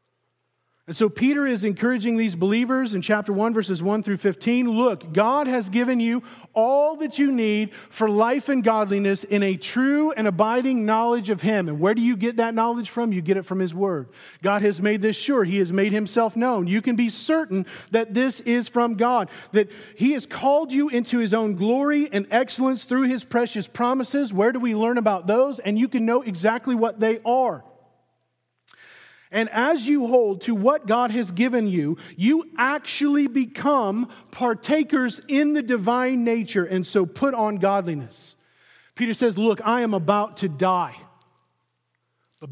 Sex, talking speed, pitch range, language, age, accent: male, 180 wpm, 195-245 Hz, English, 40-59, American